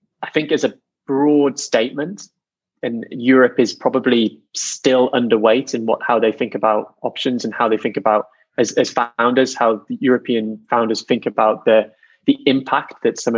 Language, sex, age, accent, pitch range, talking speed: English, male, 20-39, British, 115-130 Hz, 165 wpm